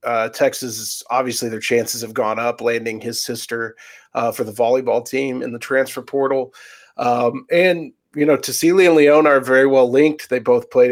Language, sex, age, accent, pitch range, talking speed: English, male, 40-59, American, 120-170 Hz, 185 wpm